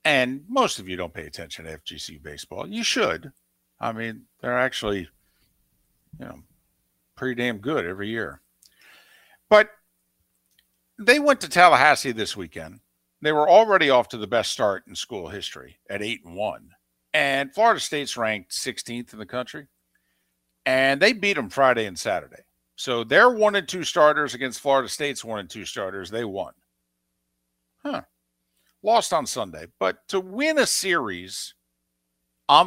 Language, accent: English, American